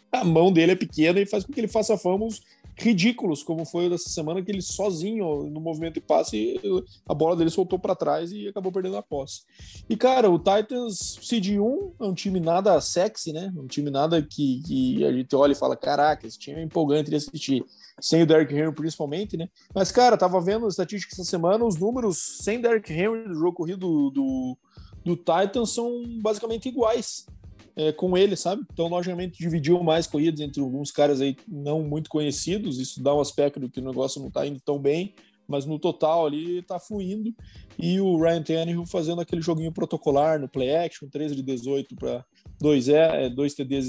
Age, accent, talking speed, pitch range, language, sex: 20-39, Brazilian, 195 wpm, 150-200 Hz, Portuguese, male